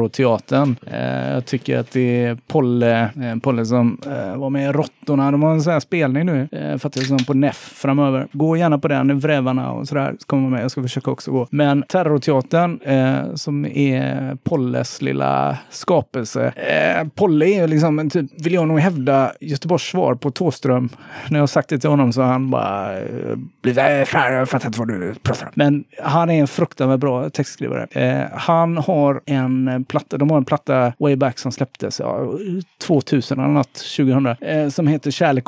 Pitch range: 125-150 Hz